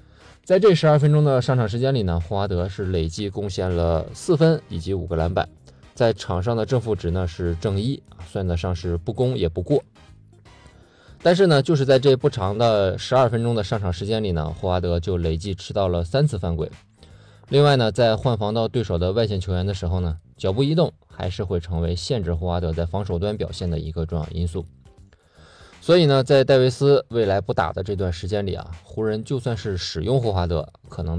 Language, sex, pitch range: Chinese, male, 85-115 Hz